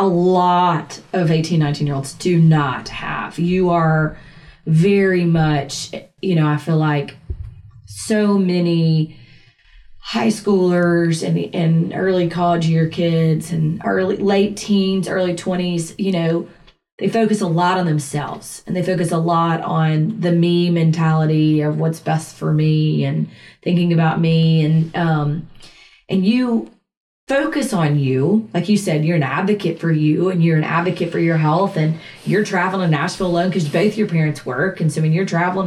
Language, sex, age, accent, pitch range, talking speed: English, female, 30-49, American, 155-185 Hz, 165 wpm